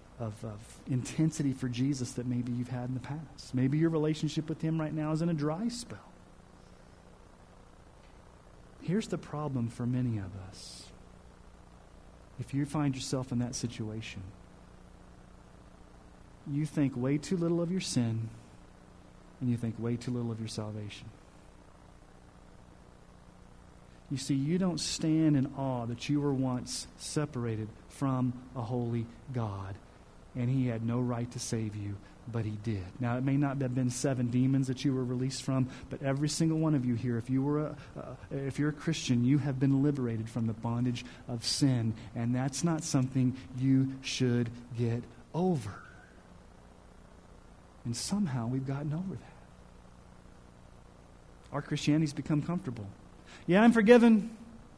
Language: English